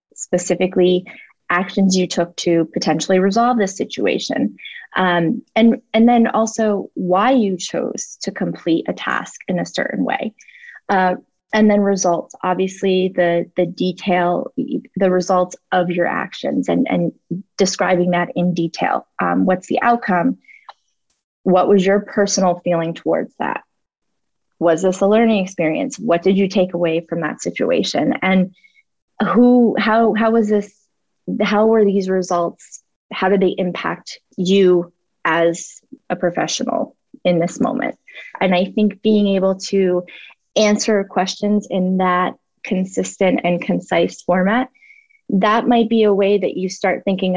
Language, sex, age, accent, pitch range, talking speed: English, female, 20-39, American, 180-210 Hz, 140 wpm